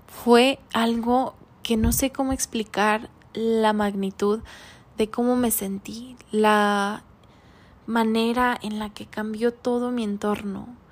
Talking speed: 120 wpm